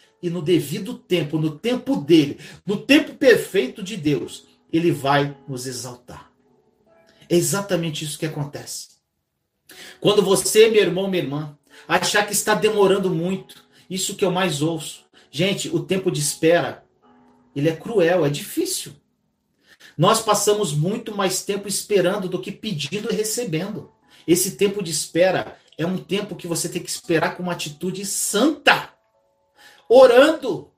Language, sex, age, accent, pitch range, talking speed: Portuguese, male, 40-59, Brazilian, 160-210 Hz, 145 wpm